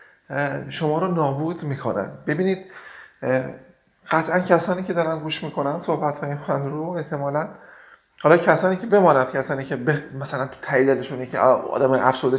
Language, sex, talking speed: Persian, male, 145 wpm